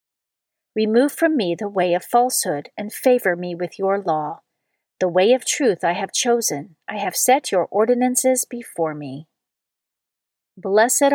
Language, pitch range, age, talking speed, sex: English, 180-255 Hz, 40-59, 150 wpm, female